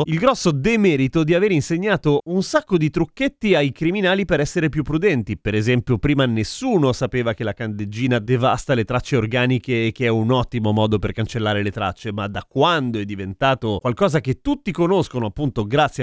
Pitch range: 115-155 Hz